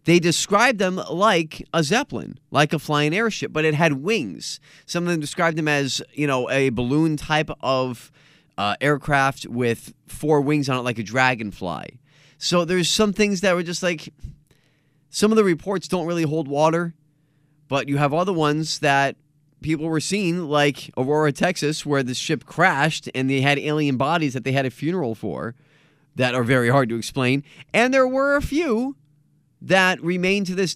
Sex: male